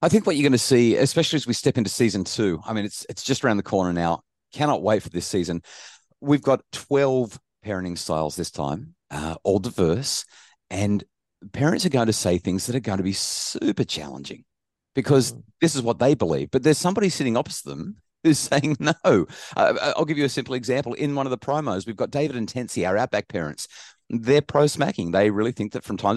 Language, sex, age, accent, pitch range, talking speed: English, male, 40-59, Australian, 95-135 Hz, 220 wpm